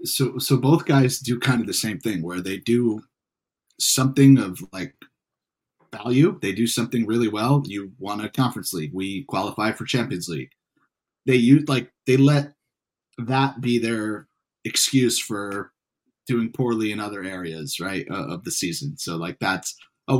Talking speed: 165 wpm